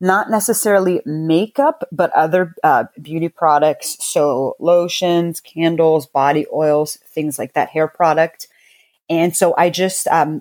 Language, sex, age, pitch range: English, female, 30-49, 155-180 Hz